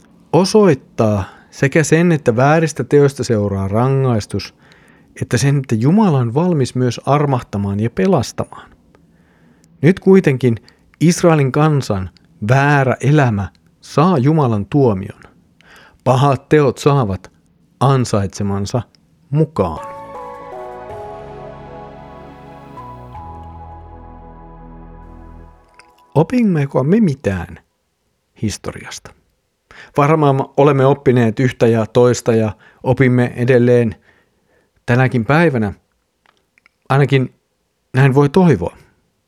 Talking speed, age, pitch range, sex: 80 wpm, 50-69, 110-155 Hz, male